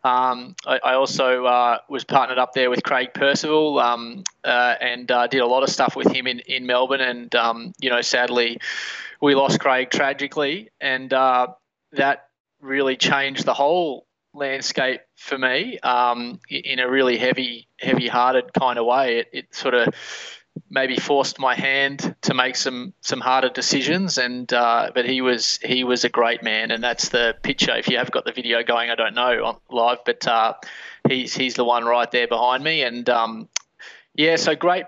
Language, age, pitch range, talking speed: English, 20-39, 120-140 Hz, 190 wpm